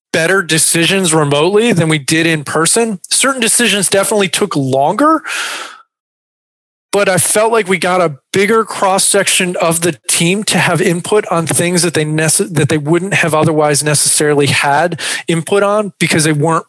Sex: male